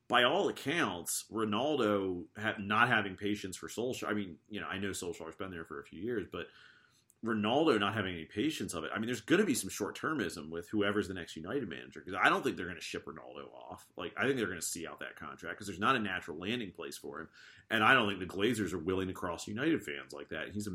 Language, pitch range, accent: English, 95-115 Hz, American